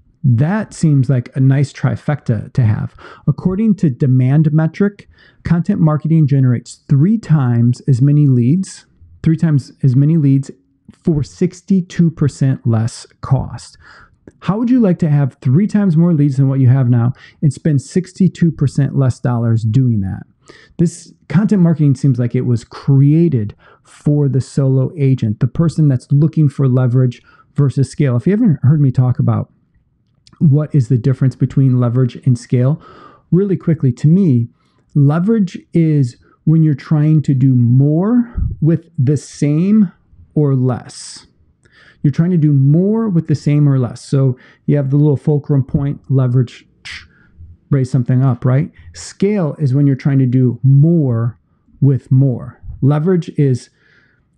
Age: 40-59